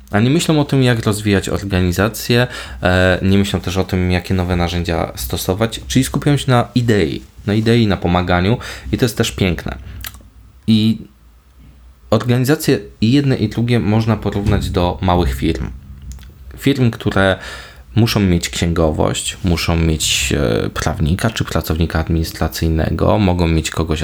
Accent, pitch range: native, 80-105 Hz